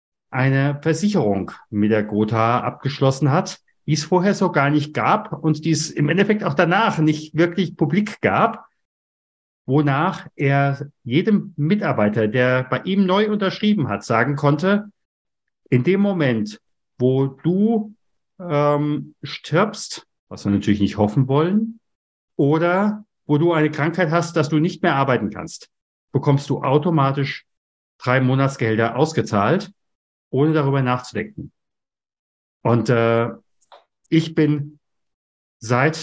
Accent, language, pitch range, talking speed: German, German, 115-160 Hz, 125 wpm